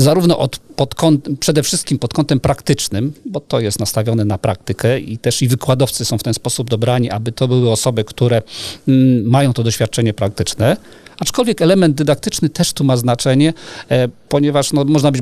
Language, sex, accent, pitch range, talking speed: Polish, male, native, 120-145 Hz, 160 wpm